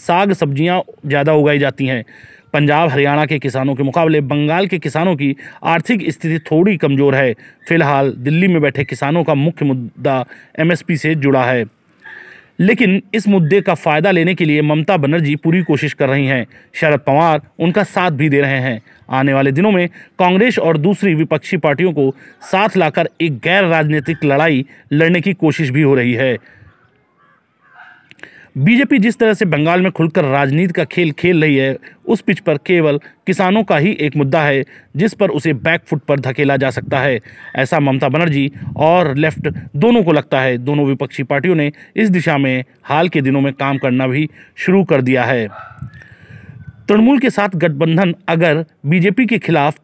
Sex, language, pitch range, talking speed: male, Hindi, 140-180 Hz, 175 wpm